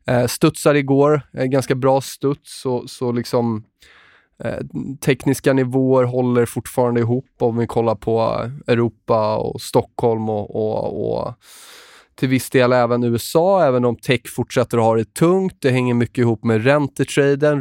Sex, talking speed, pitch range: male, 155 wpm, 120-140 Hz